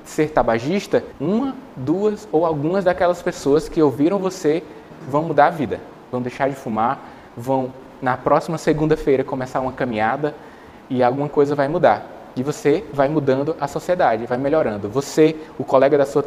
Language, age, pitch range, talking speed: Portuguese, 20-39, 135-160 Hz, 160 wpm